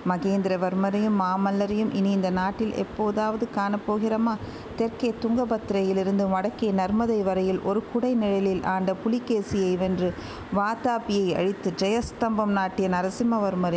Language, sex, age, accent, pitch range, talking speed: Tamil, female, 50-69, native, 180-210 Hz, 100 wpm